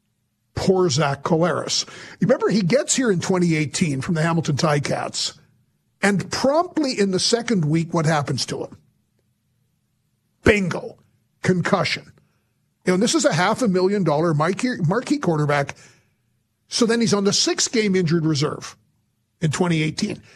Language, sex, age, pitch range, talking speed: English, male, 50-69, 140-220 Hz, 145 wpm